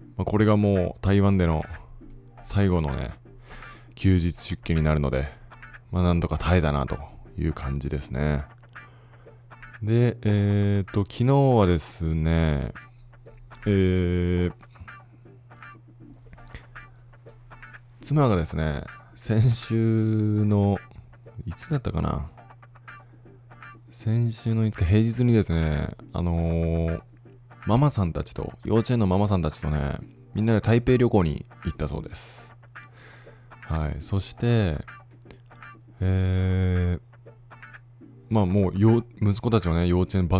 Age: 20-39